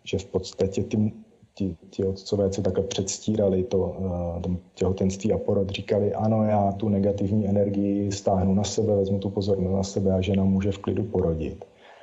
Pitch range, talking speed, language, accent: 95-110 Hz, 160 wpm, Czech, native